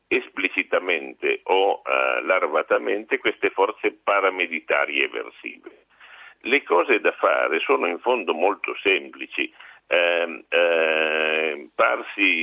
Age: 50-69